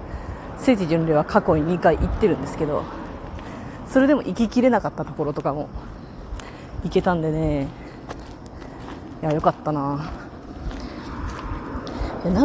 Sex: female